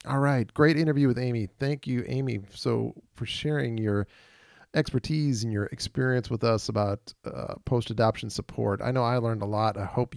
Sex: male